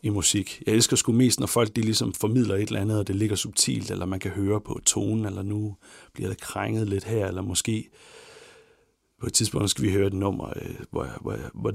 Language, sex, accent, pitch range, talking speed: Danish, male, native, 95-115 Hz, 225 wpm